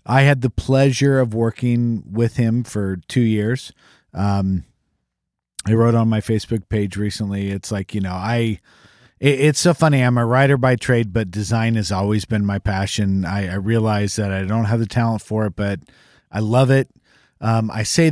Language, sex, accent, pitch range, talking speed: English, male, American, 100-115 Hz, 190 wpm